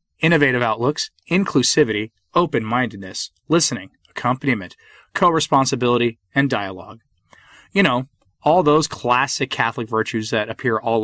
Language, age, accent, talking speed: English, 30-49, American, 105 wpm